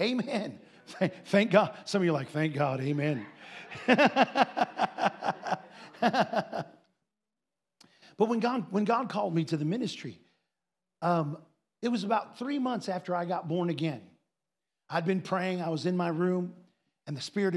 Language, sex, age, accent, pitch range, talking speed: English, male, 50-69, American, 160-195 Hz, 145 wpm